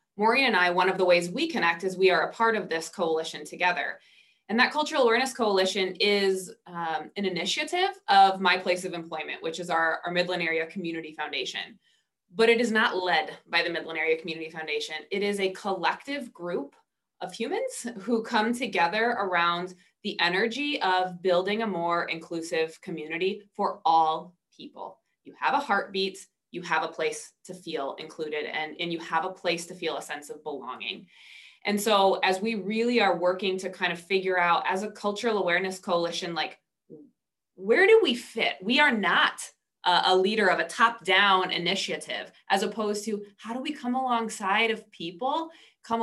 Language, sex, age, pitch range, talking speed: English, female, 20-39, 175-230 Hz, 180 wpm